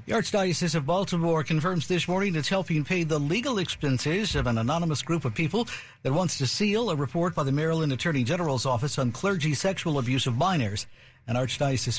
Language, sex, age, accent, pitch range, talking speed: English, male, 60-79, American, 130-175 Hz, 195 wpm